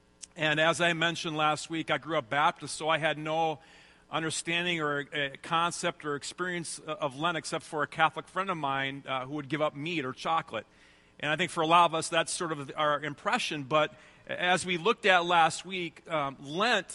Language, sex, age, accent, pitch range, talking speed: English, male, 40-59, American, 140-170 Hz, 210 wpm